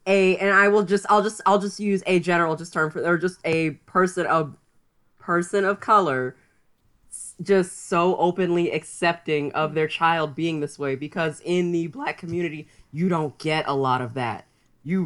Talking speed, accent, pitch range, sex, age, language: 185 wpm, American, 160-210 Hz, female, 20-39, English